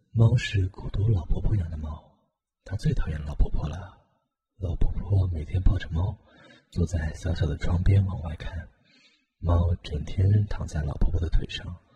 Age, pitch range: 30-49, 85-100 Hz